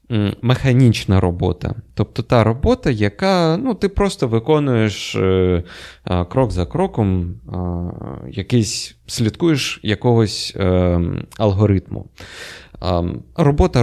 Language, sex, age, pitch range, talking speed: Ukrainian, male, 20-39, 90-120 Hz, 75 wpm